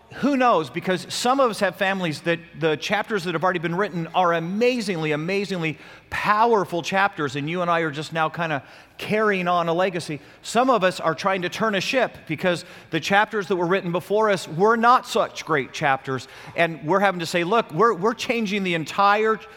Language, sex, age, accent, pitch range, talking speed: English, male, 40-59, American, 165-220 Hz, 205 wpm